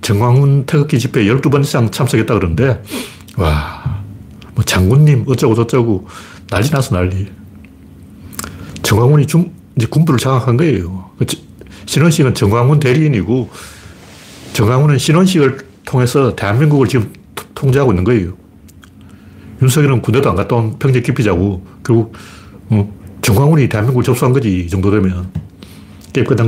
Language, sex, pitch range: Korean, male, 100-135 Hz